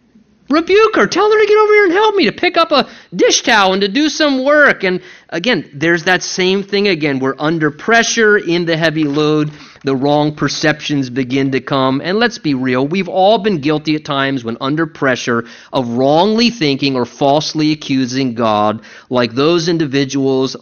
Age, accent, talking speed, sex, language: 30-49, American, 190 wpm, male, English